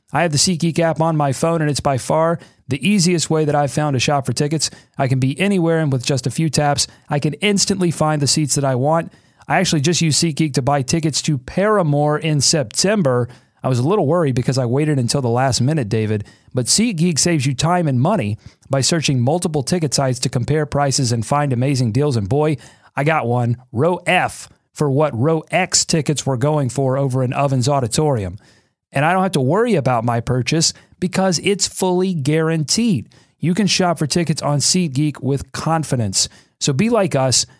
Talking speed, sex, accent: 205 wpm, male, American